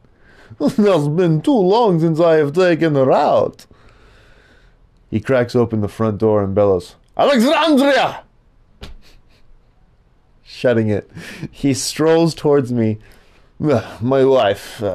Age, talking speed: 30-49, 115 wpm